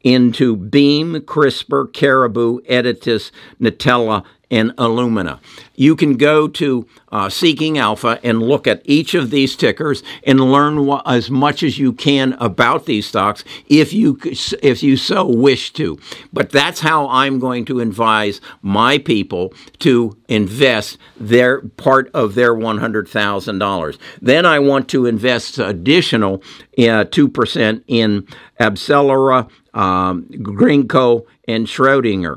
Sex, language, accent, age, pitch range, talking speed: male, English, American, 60-79, 110-135 Hz, 135 wpm